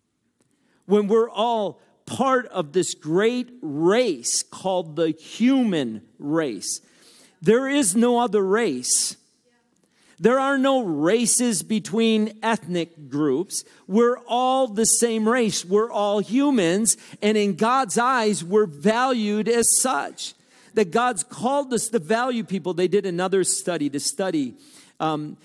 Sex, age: male, 50-69